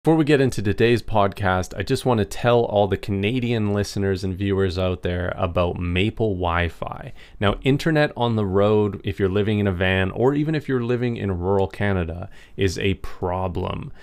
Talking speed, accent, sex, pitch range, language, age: 190 wpm, American, male, 95-110 Hz, English, 30-49